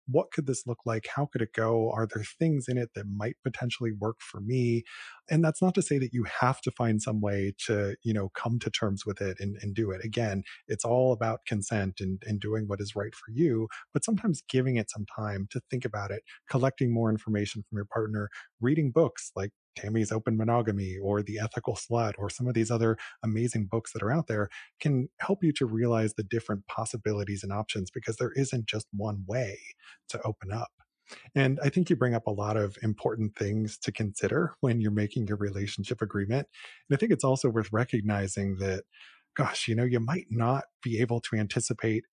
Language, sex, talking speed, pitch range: English, male, 215 wpm, 105-130 Hz